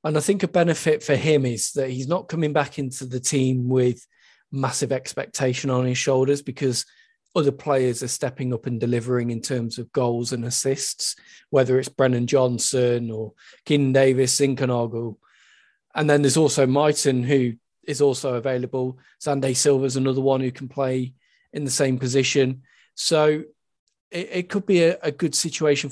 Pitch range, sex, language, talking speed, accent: 130-150 Hz, male, English, 170 wpm, British